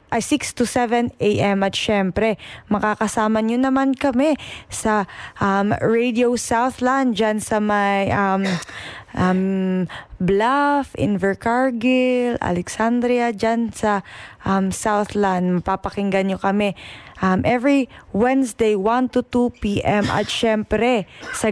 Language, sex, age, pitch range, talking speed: Filipino, female, 20-39, 200-245 Hz, 110 wpm